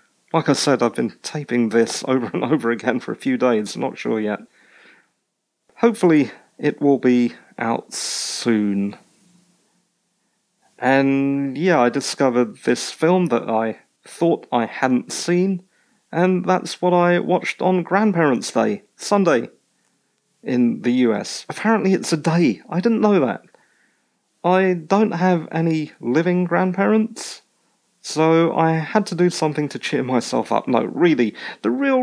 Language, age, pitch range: English, 40-59, 120-185 Hz